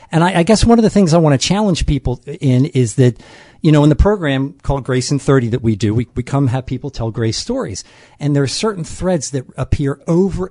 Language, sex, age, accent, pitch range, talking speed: English, male, 50-69, American, 120-155 Hz, 250 wpm